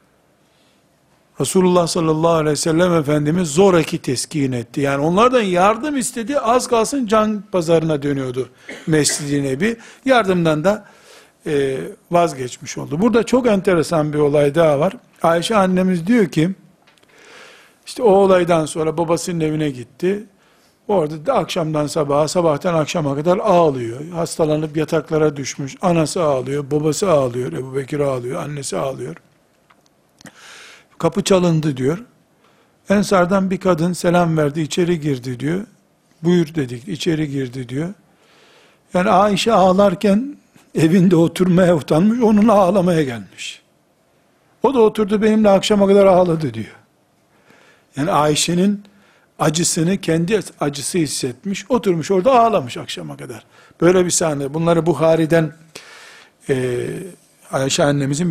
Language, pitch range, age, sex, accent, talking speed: Turkish, 150-195 Hz, 60-79, male, native, 115 wpm